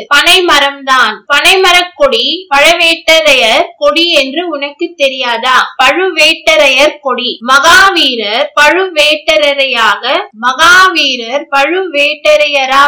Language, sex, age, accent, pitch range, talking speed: Tamil, female, 20-39, native, 270-320 Hz, 60 wpm